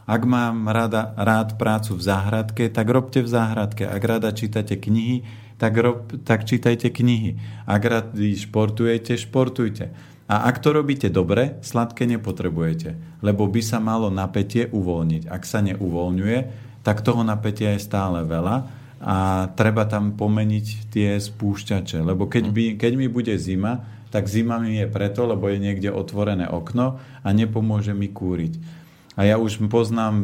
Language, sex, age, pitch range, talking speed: Slovak, male, 40-59, 100-115 Hz, 150 wpm